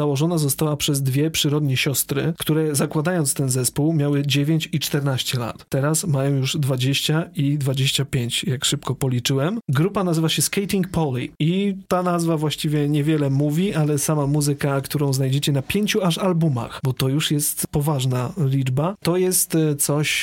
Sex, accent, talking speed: male, native, 155 wpm